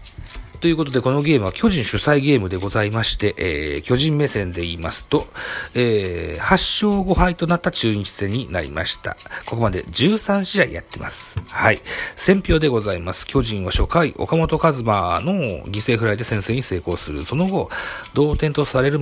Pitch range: 95-140 Hz